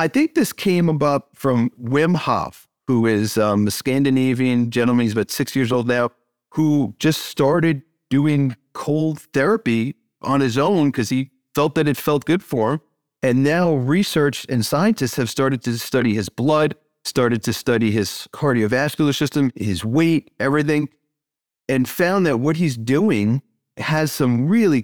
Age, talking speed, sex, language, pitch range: 40-59, 160 wpm, male, English, 120-150 Hz